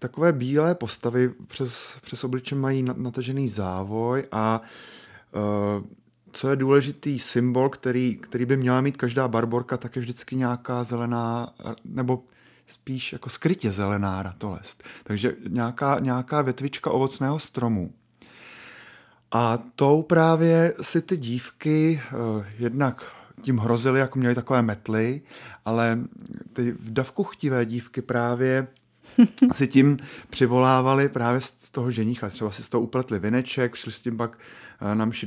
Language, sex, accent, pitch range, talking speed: Czech, male, native, 115-135 Hz, 130 wpm